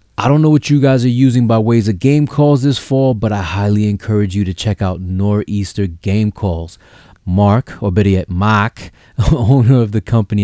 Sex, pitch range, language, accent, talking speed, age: male, 95-125 Hz, English, American, 200 wpm, 30-49